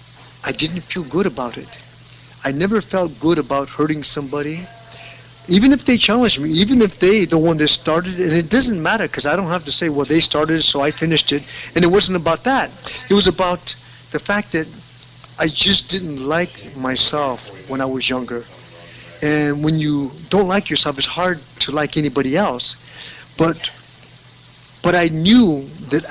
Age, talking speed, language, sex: 50-69, 180 wpm, English, male